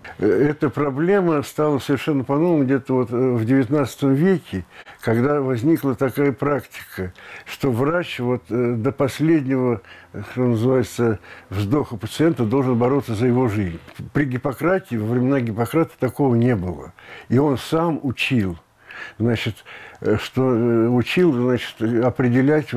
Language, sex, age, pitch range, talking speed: Russian, male, 60-79, 110-135 Hz, 120 wpm